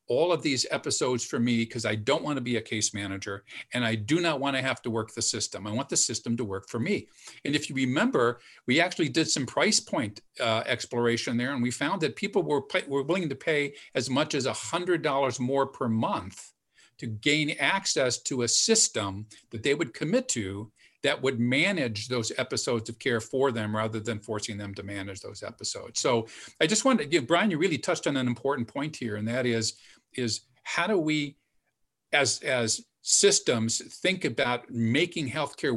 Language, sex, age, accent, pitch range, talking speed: English, male, 50-69, American, 115-145 Hz, 205 wpm